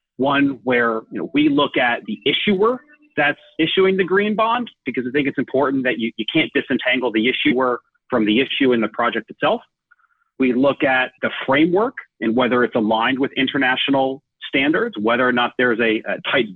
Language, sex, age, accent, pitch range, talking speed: English, male, 40-59, American, 115-150 Hz, 190 wpm